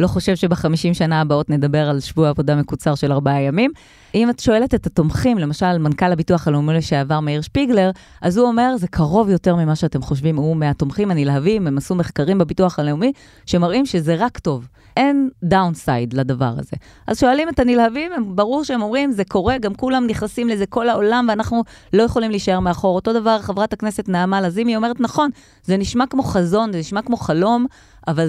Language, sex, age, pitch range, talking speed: Hebrew, female, 30-49, 155-225 Hz, 170 wpm